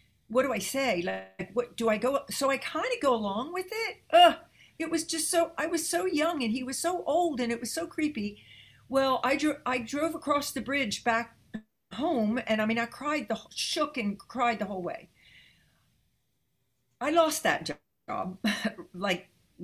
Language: English